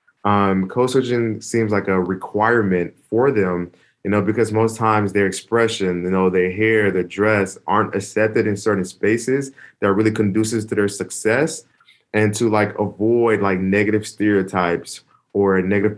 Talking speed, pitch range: 155 wpm, 95-110 Hz